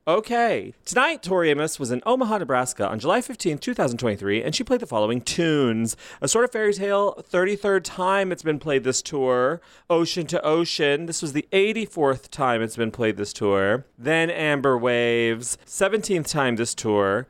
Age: 30-49